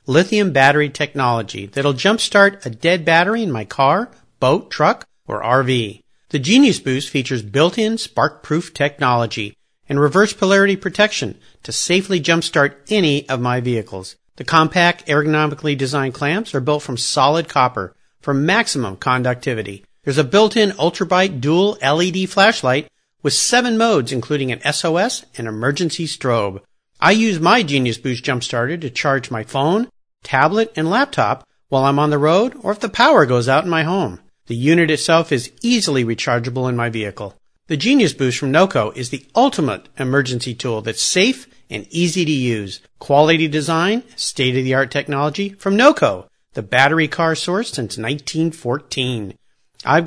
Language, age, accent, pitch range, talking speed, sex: English, 50-69, American, 130-185 Hz, 150 wpm, male